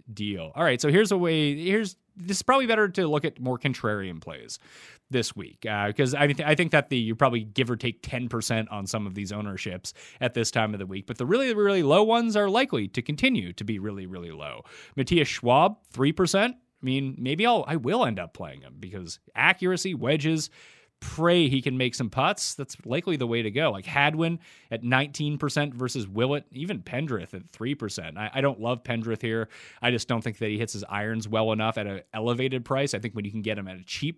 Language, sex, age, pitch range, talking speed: English, male, 30-49, 110-155 Hz, 230 wpm